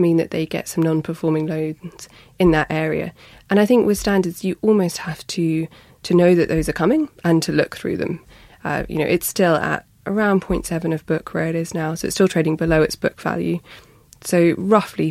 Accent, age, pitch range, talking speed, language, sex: British, 20-39, 155-185 Hz, 215 wpm, English, female